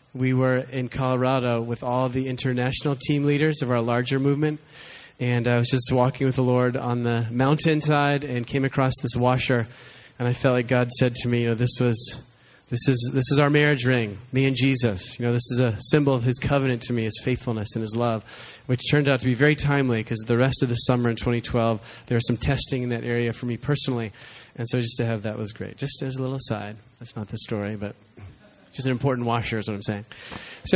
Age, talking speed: 20-39, 235 wpm